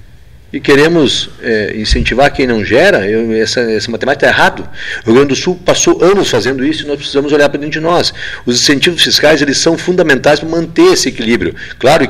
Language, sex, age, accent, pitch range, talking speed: Portuguese, male, 40-59, Brazilian, 105-140 Hz, 190 wpm